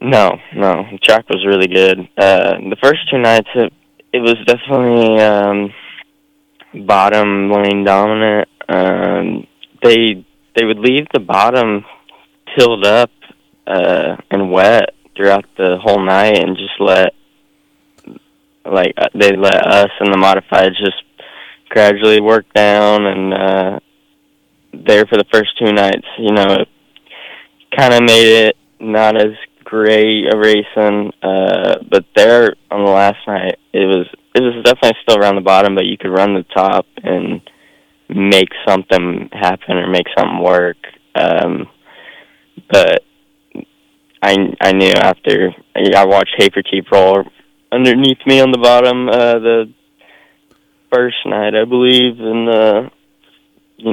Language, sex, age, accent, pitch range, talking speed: English, male, 20-39, American, 100-120 Hz, 135 wpm